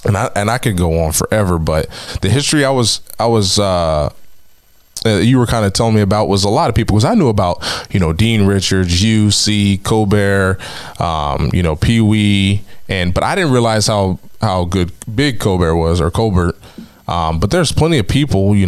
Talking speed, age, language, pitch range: 205 wpm, 20-39, English, 95-110 Hz